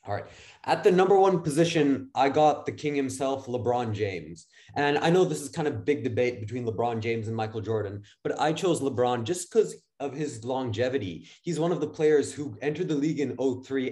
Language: English